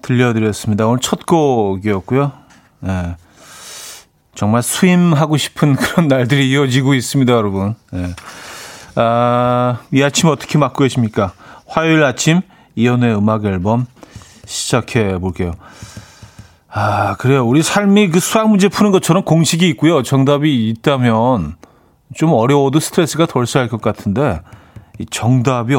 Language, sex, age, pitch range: Korean, male, 30-49, 110-160 Hz